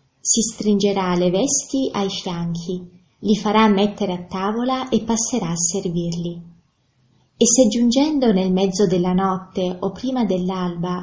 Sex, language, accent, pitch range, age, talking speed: female, Italian, native, 185-210 Hz, 20-39, 135 wpm